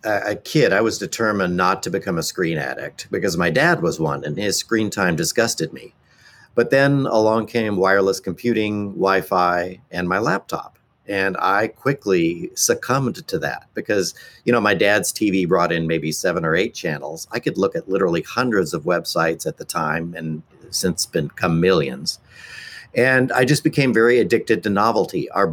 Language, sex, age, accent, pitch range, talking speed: English, male, 50-69, American, 85-115 Hz, 175 wpm